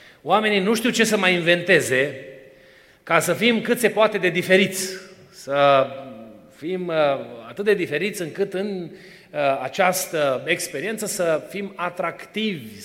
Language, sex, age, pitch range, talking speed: Romanian, male, 30-49, 150-205 Hz, 125 wpm